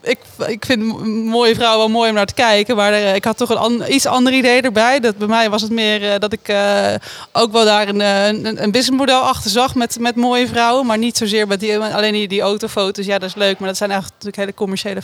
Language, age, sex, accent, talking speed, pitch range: Dutch, 20-39, female, Dutch, 260 wpm, 185-220 Hz